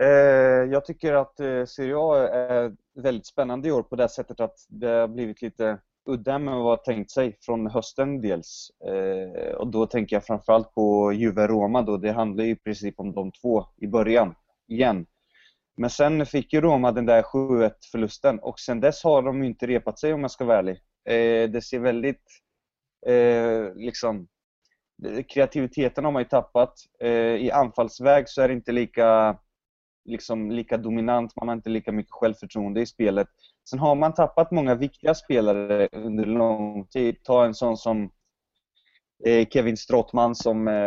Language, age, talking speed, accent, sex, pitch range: English, 20-39, 160 wpm, Swedish, male, 110-125 Hz